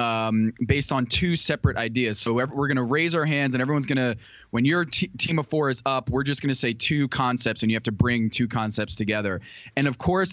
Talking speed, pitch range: 250 wpm, 120-160 Hz